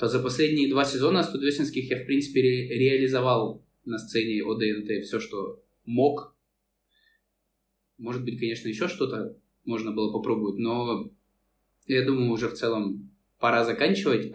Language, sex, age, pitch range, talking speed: Russian, male, 20-39, 105-130 Hz, 130 wpm